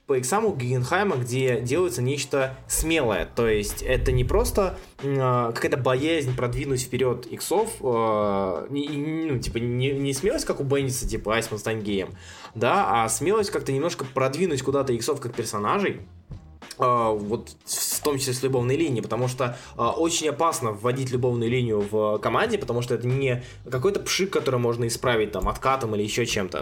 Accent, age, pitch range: native, 20-39, 115-145 Hz